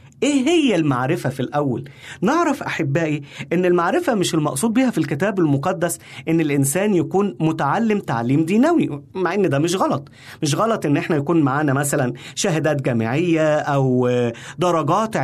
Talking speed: 145 wpm